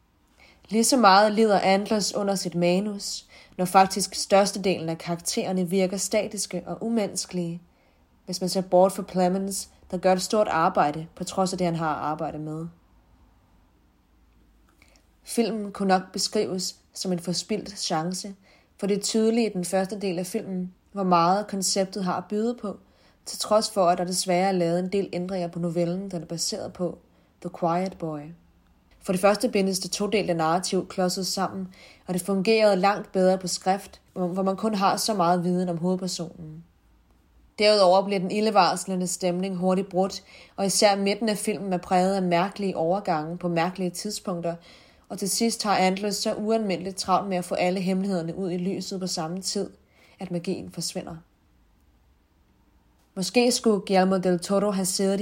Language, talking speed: Danish, 170 wpm